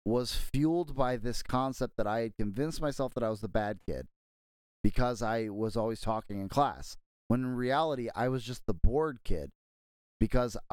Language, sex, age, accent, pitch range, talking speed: English, male, 30-49, American, 115-165 Hz, 185 wpm